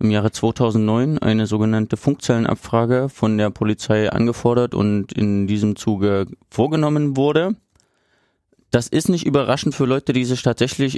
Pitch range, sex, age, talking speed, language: 110-130 Hz, male, 30-49, 135 wpm, German